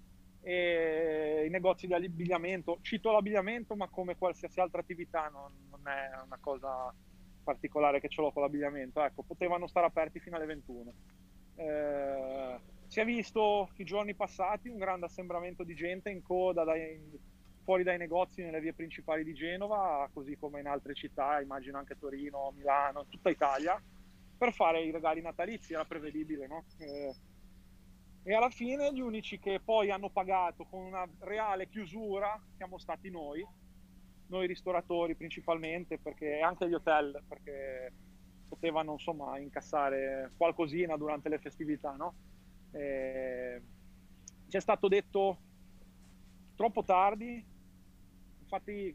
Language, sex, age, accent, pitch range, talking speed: Italian, male, 20-39, native, 135-180 Hz, 135 wpm